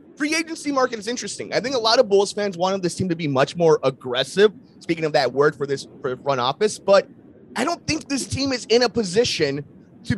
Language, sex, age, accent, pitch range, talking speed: English, male, 30-49, American, 165-245 Hz, 235 wpm